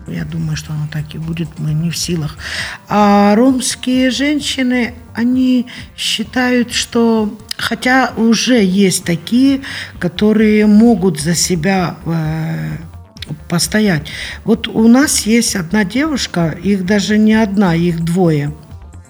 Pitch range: 170-230 Hz